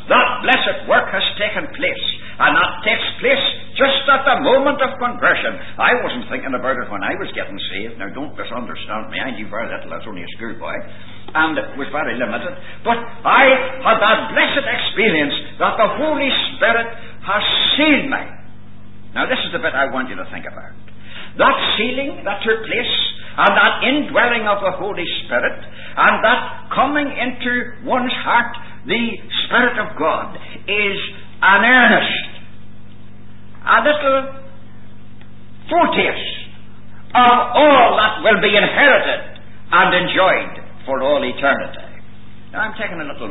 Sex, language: male, English